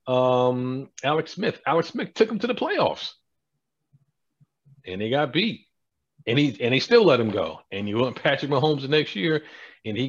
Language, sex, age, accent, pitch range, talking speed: English, male, 40-59, American, 105-140 Hz, 190 wpm